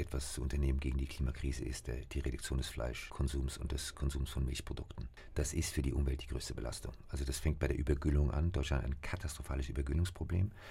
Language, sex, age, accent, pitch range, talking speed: German, male, 50-69, German, 70-85 Hz, 200 wpm